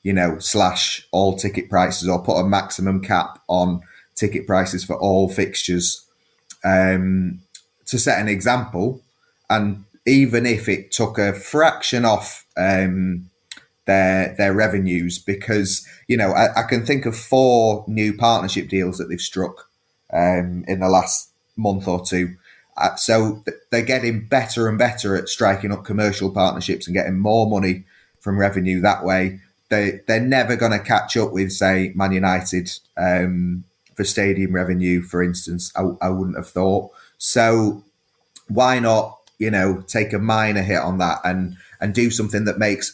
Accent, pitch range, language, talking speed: British, 95-110 Hz, English, 160 wpm